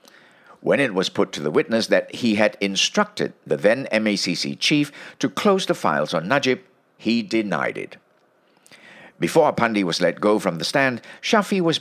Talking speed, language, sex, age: 175 wpm, English, male, 60-79